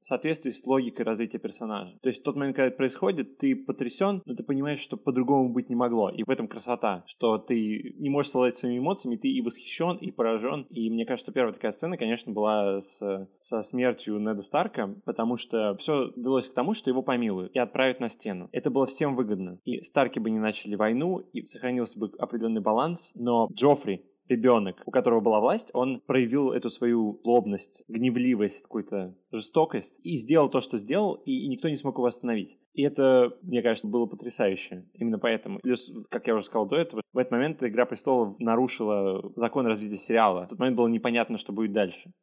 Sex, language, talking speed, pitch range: male, Russian, 200 wpm, 110-130 Hz